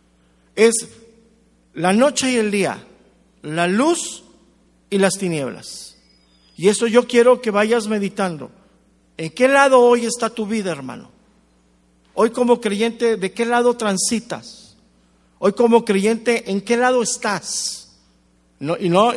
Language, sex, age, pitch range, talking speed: English, male, 50-69, 145-230 Hz, 130 wpm